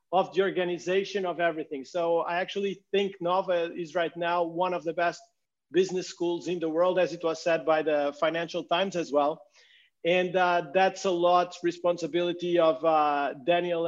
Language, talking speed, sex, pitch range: English, 175 wpm, male, 175-200 Hz